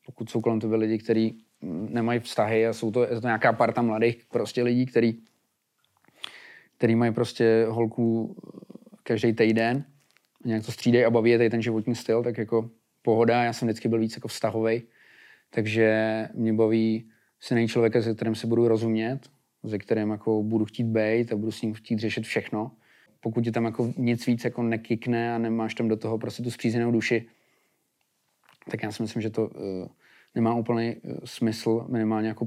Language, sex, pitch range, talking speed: Czech, male, 110-120 Hz, 175 wpm